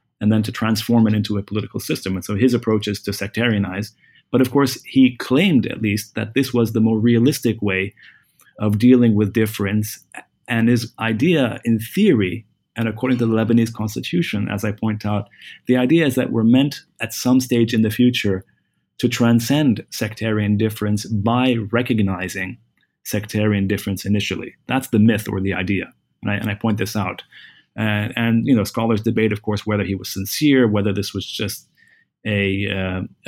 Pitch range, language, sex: 105-120 Hz, English, male